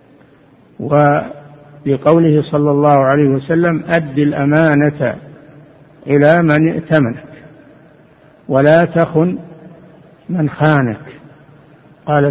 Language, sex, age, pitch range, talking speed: Arabic, male, 60-79, 140-160 Hz, 75 wpm